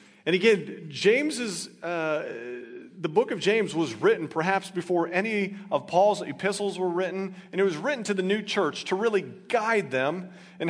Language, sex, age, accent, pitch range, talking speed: English, male, 40-59, American, 180-225 Hz, 175 wpm